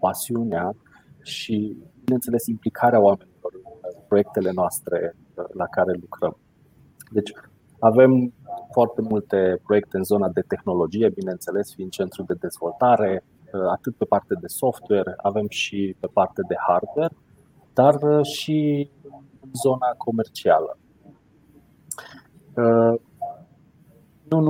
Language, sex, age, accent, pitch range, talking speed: Romanian, male, 30-49, native, 100-140 Hz, 105 wpm